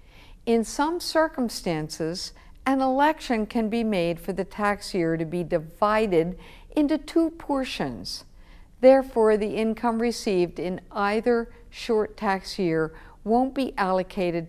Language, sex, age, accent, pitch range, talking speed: English, female, 60-79, American, 185-245 Hz, 125 wpm